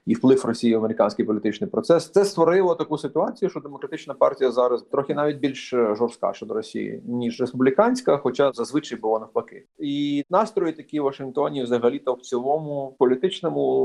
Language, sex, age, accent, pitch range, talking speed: Ukrainian, male, 30-49, native, 120-160 Hz, 155 wpm